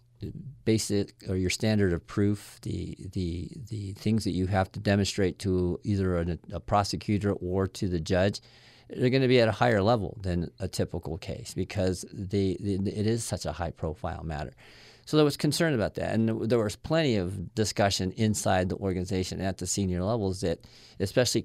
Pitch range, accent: 90-110 Hz, American